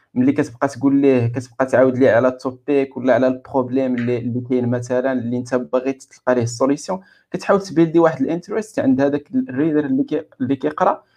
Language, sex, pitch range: Arabic, male, 130-170 Hz